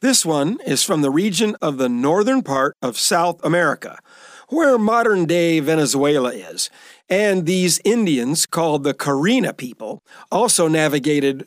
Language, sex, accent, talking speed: English, male, American, 135 wpm